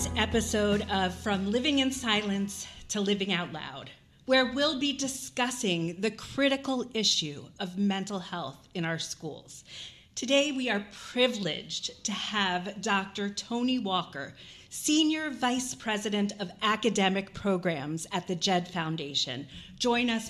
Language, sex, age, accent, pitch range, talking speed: English, female, 40-59, American, 175-250 Hz, 130 wpm